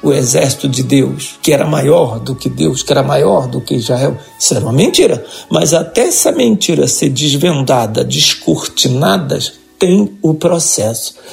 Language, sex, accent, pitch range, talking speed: Portuguese, male, Brazilian, 140-200 Hz, 160 wpm